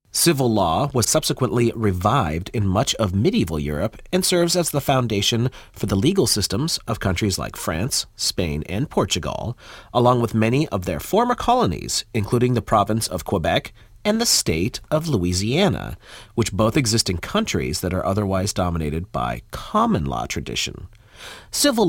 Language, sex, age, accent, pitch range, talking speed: English, male, 40-59, American, 95-135 Hz, 155 wpm